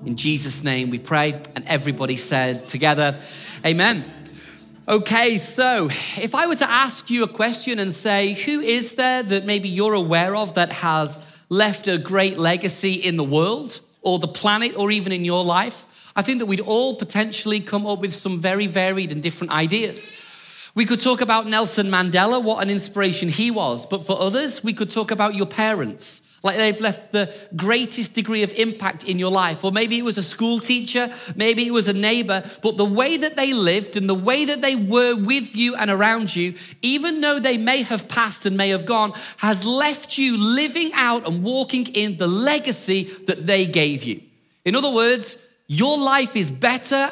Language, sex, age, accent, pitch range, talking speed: English, male, 30-49, British, 185-235 Hz, 195 wpm